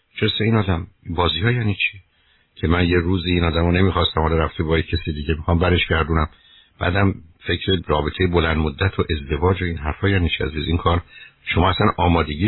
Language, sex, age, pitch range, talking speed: Persian, male, 60-79, 80-105 Hz, 185 wpm